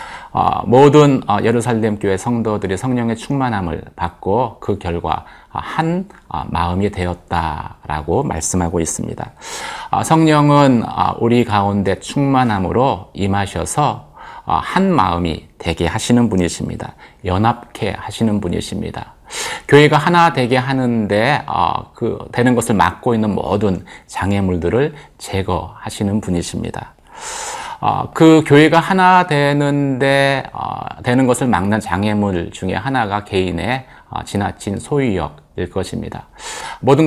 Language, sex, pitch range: Korean, male, 95-135 Hz